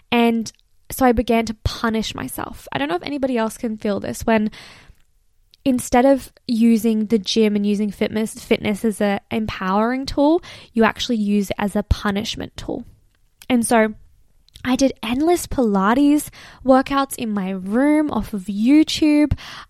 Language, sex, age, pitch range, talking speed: English, female, 10-29, 215-280 Hz, 155 wpm